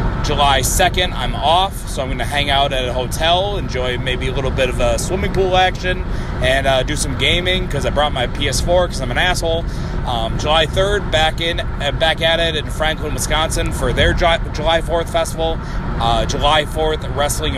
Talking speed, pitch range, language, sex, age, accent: 195 wpm, 130-165 Hz, English, male, 30-49, American